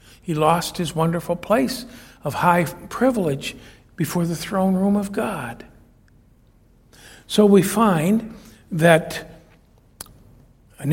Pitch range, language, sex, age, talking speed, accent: 135-195 Hz, English, male, 60-79, 105 wpm, American